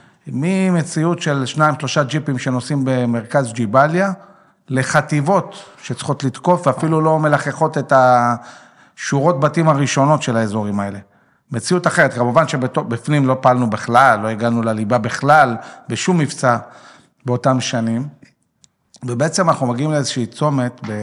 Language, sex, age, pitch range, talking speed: English, male, 40-59, 120-155 Hz, 115 wpm